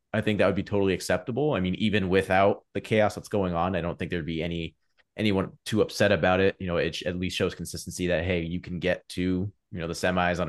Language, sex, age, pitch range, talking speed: English, male, 30-49, 80-95 Hz, 265 wpm